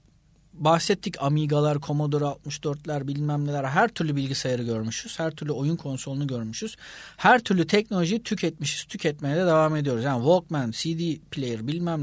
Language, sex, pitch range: Turkish, male, 130-170 Hz